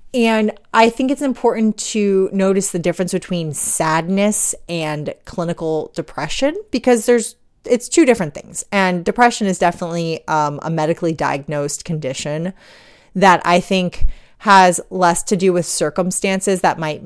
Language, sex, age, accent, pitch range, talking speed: English, female, 30-49, American, 160-210 Hz, 140 wpm